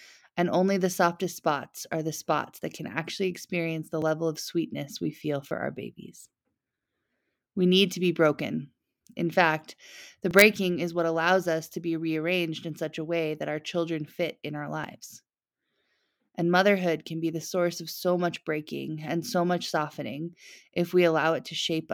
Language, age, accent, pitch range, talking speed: English, 20-39, American, 155-175 Hz, 185 wpm